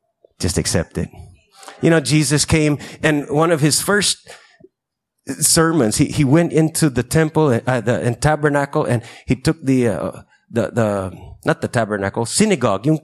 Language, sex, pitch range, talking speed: English, male, 120-155 Hz, 165 wpm